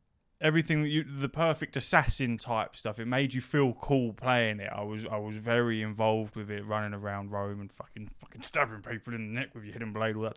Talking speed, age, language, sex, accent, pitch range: 225 wpm, 20-39, English, male, British, 110-145 Hz